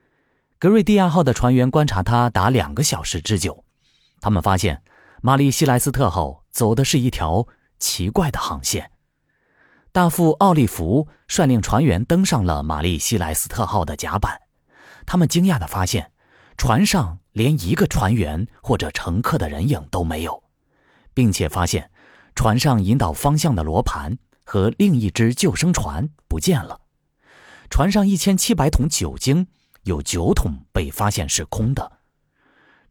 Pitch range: 90-150 Hz